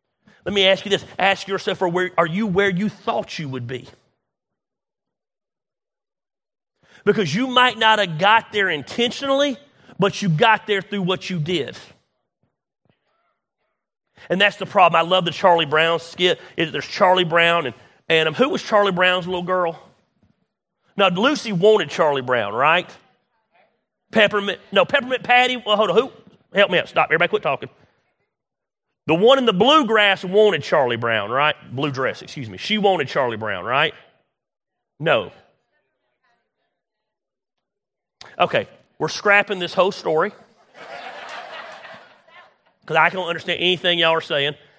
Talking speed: 140 wpm